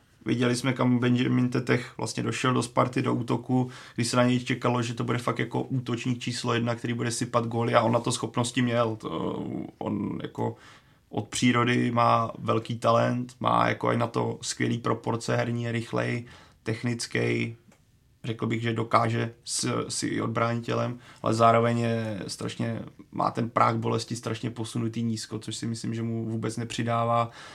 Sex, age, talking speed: male, 30-49, 165 wpm